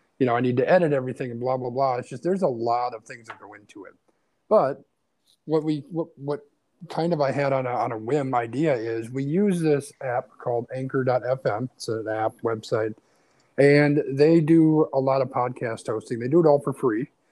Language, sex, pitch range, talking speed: English, male, 120-145 Hz, 215 wpm